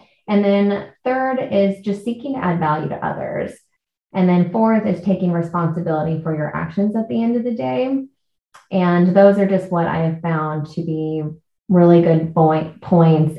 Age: 20-39